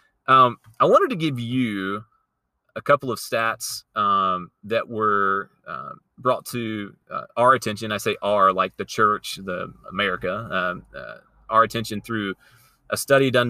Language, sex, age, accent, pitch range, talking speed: English, male, 30-49, American, 105-130 Hz, 155 wpm